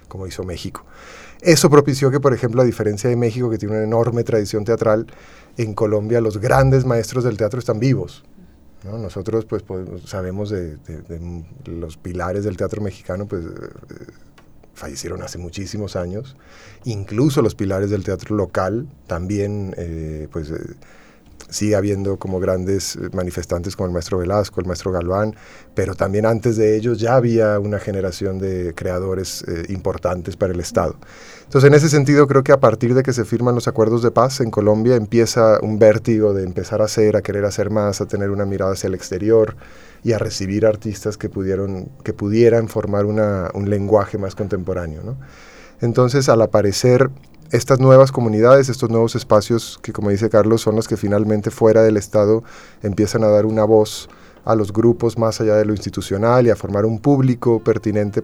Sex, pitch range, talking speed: male, 95-115 Hz, 180 wpm